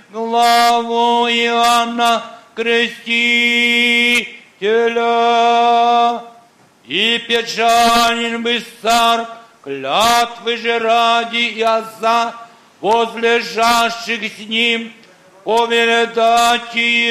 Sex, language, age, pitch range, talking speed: male, Polish, 50-69, 230-235 Hz, 55 wpm